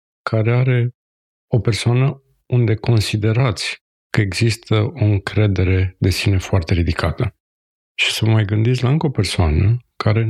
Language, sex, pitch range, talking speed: Romanian, male, 95-115 Hz, 135 wpm